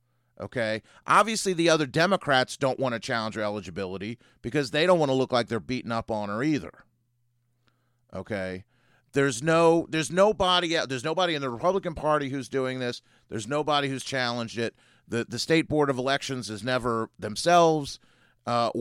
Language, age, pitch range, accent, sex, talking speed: English, 40-59, 115-145 Hz, American, male, 170 wpm